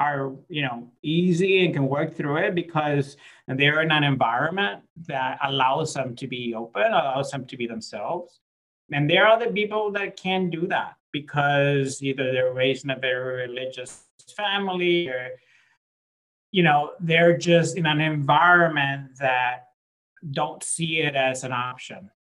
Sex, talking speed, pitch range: male, 155 wpm, 125-165 Hz